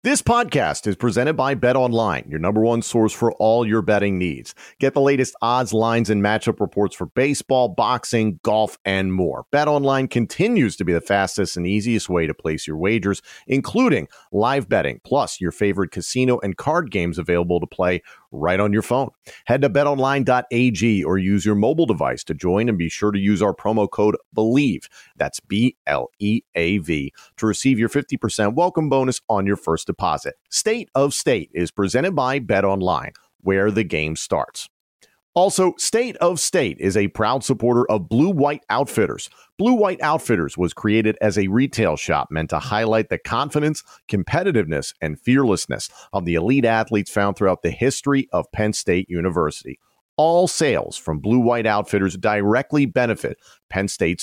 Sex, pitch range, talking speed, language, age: male, 95-135 Hz, 170 wpm, English, 40-59